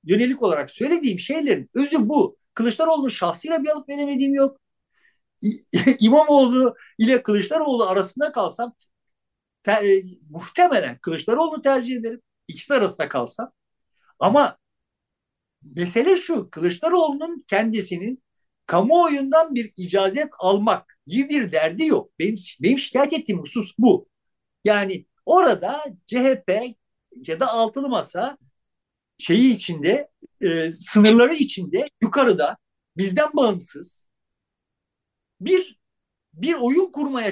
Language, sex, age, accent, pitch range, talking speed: Turkish, male, 50-69, native, 195-285 Hz, 105 wpm